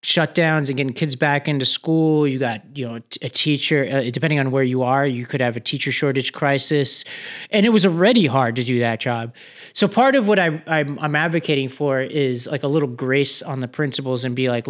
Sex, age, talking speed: male, 20-39, 225 wpm